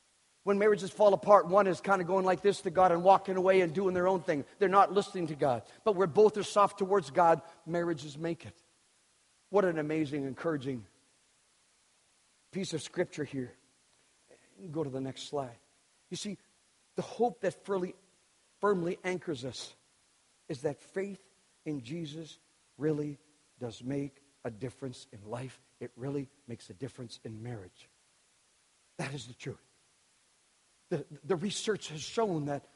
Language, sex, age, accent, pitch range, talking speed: English, male, 50-69, American, 150-220 Hz, 160 wpm